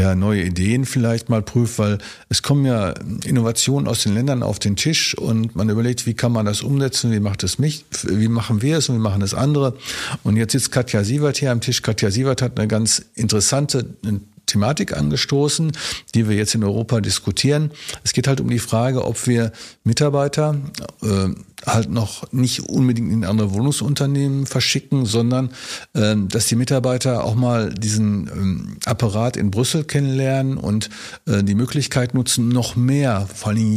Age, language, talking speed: 50-69, German, 180 wpm